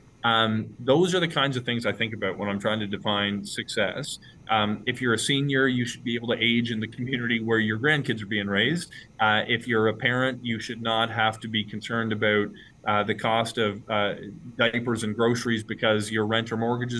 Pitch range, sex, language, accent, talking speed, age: 115-135 Hz, male, English, American, 220 wpm, 20-39